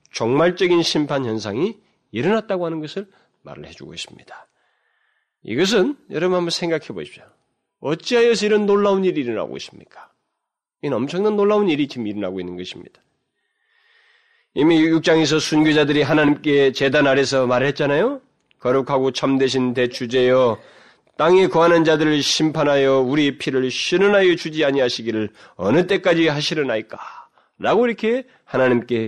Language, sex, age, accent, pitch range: Korean, male, 30-49, native, 135-210 Hz